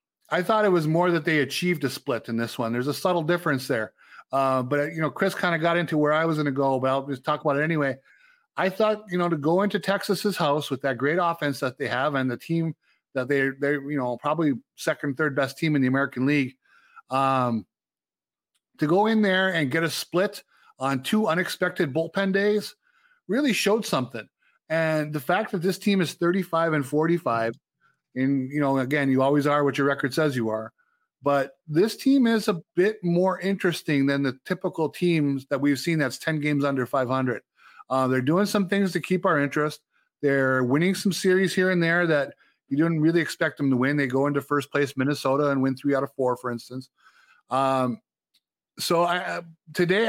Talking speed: 205 wpm